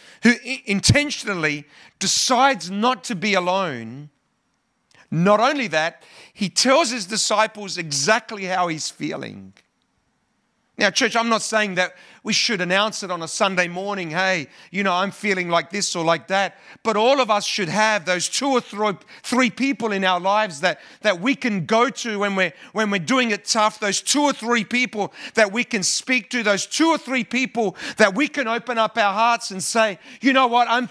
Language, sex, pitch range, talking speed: English, male, 185-235 Hz, 185 wpm